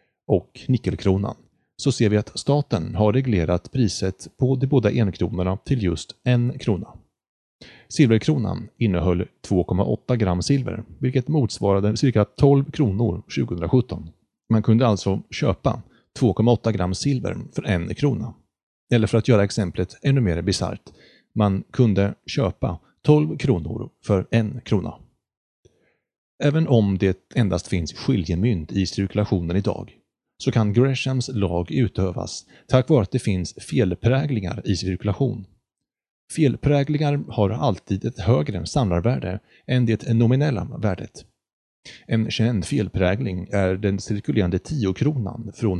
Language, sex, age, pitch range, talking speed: Swedish, male, 30-49, 95-130 Hz, 125 wpm